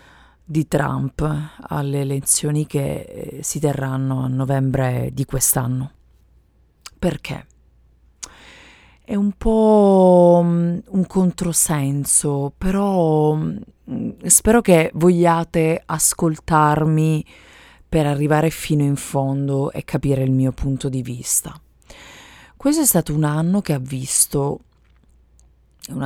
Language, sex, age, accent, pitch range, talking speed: Italian, female, 30-49, native, 135-165 Hz, 100 wpm